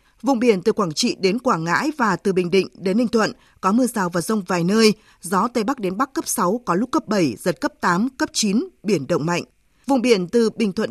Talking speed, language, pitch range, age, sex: 255 wpm, Vietnamese, 190-255 Hz, 20-39, female